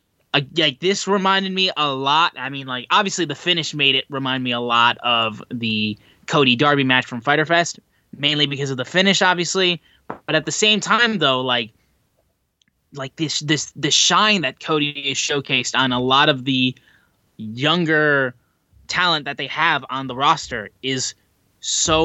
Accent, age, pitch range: American, 10-29, 130-170 Hz